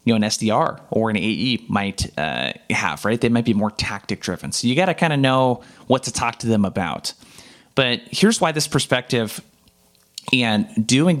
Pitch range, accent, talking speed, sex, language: 105-130 Hz, American, 195 wpm, male, English